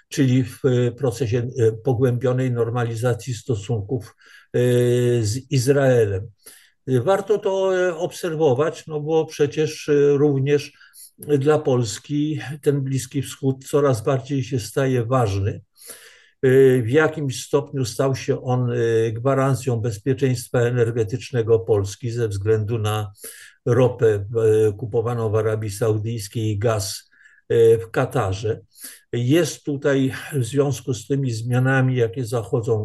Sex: male